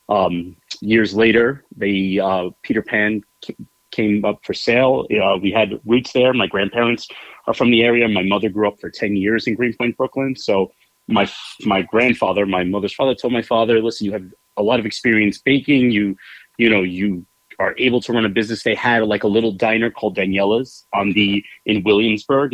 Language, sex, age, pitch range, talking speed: English, male, 30-49, 100-115 Hz, 190 wpm